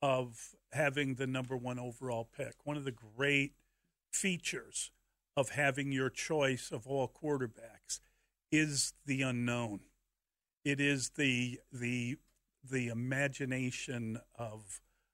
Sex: male